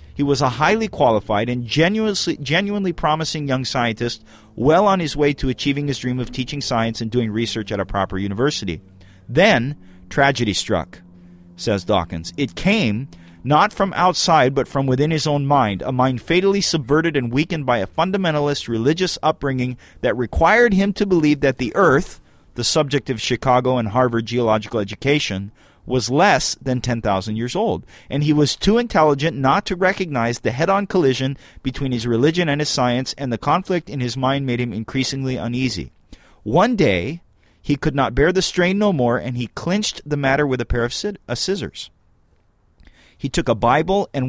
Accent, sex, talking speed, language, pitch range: American, male, 175 wpm, English, 115-155 Hz